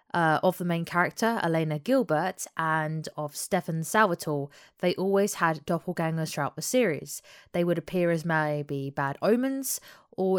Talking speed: 150 wpm